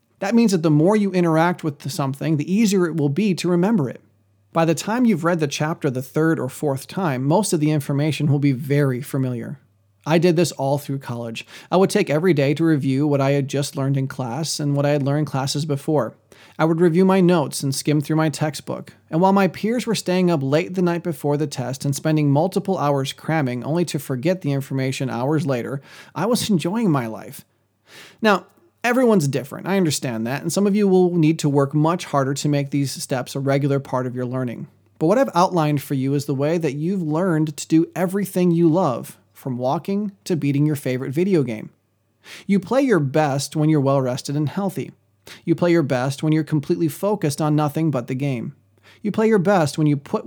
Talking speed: 220 wpm